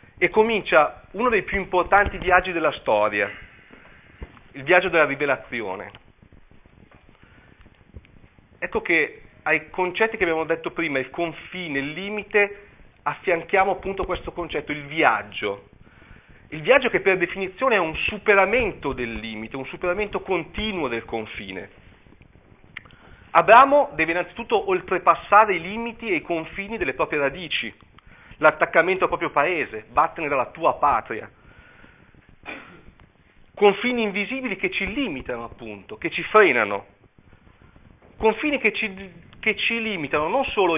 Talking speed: 120 wpm